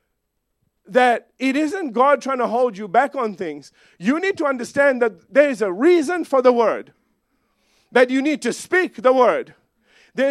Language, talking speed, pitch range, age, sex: English, 180 wpm, 230-330 Hz, 50-69, male